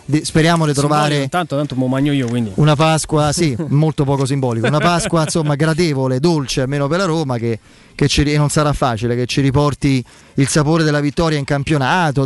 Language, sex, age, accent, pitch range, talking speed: Italian, male, 30-49, native, 145-200 Hz, 165 wpm